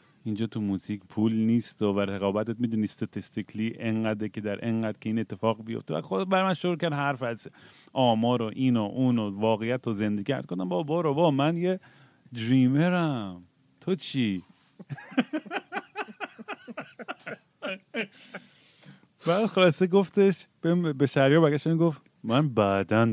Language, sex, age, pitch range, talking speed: Persian, male, 30-49, 110-145 Hz, 125 wpm